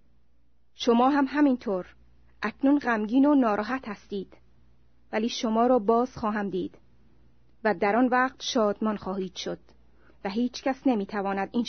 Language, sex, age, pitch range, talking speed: Persian, female, 30-49, 185-250 Hz, 135 wpm